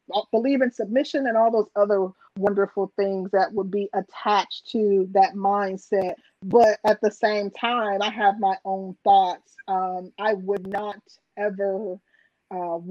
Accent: American